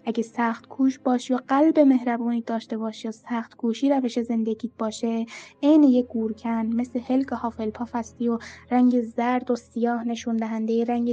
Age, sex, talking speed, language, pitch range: 10-29, female, 160 wpm, Persian, 235-275 Hz